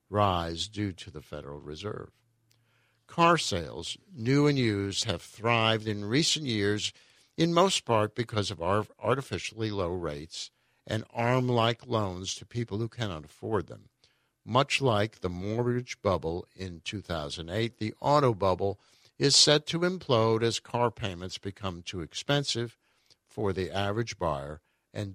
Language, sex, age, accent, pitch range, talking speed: English, male, 60-79, American, 100-135 Hz, 140 wpm